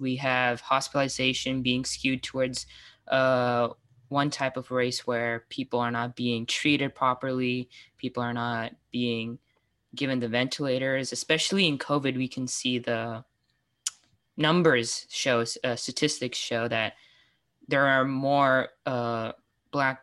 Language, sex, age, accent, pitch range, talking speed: English, female, 10-29, American, 120-140 Hz, 125 wpm